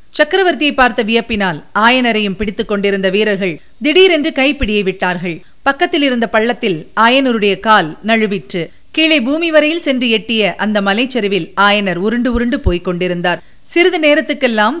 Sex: female